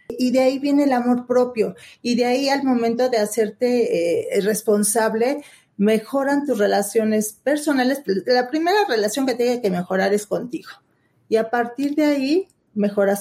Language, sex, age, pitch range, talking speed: Spanish, female, 40-59, 205-245 Hz, 160 wpm